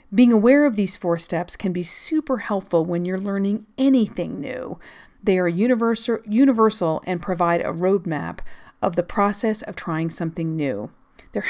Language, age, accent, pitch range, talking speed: English, 40-59, American, 170-220 Hz, 155 wpm